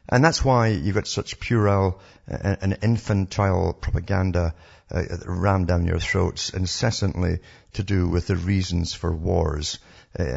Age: 50-69